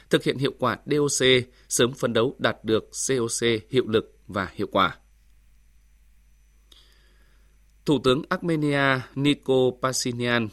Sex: male